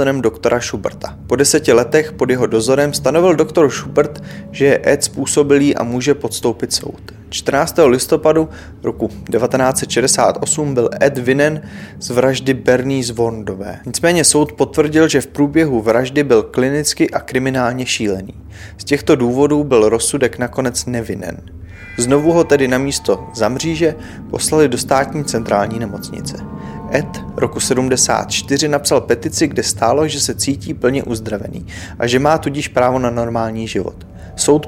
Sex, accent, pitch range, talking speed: male, native, 115-145 Hz, 140 wpm